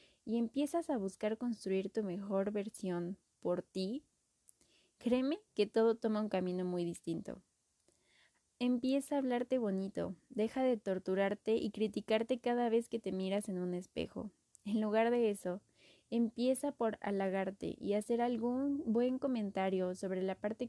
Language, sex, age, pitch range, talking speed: Spanish, female, 20-39, 195-240 Hz, 145 wpm